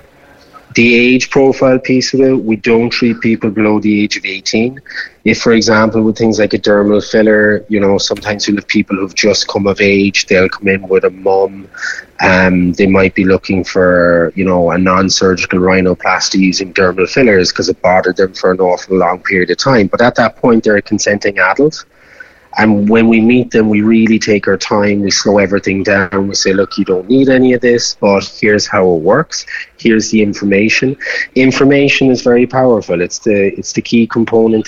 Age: 30-49